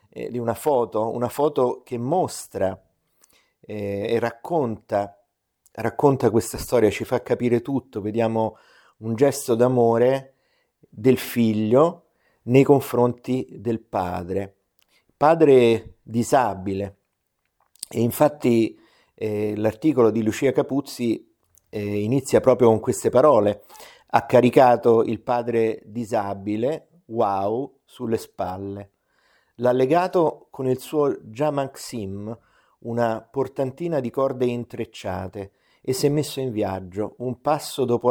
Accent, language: native, Italian